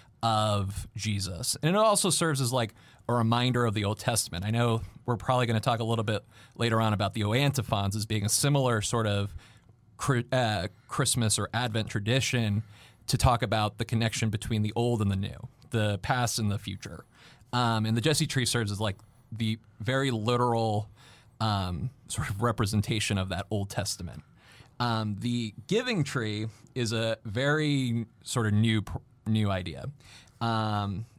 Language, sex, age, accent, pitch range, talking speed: English, male, 30-49, American, 105-125 Hz, 165 wpm